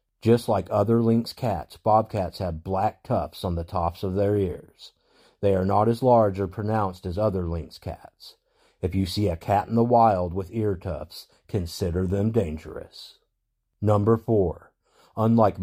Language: English